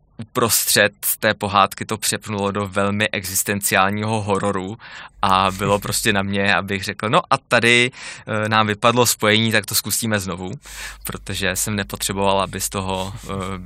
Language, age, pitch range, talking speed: Czech, 20-39, 100-115 Hz, 150 wpm